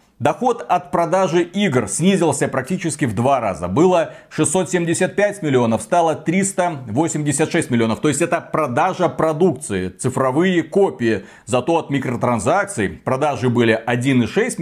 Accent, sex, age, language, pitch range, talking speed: native, male, 40-59, Russian, 130-185 Hz, 115 wpm